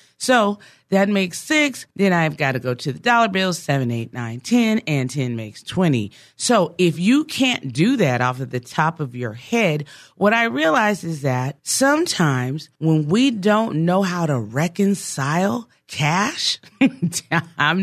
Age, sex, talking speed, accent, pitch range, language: 40-59, female, 165 wpm, American, 145-220 Hz, English